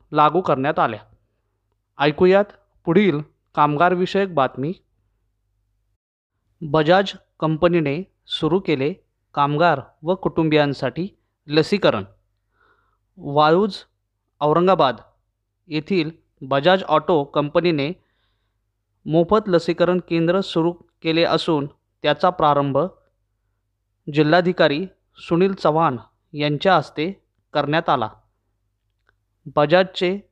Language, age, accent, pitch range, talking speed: Marathi, 20-39, native, 110-175 Hz, 75 wpm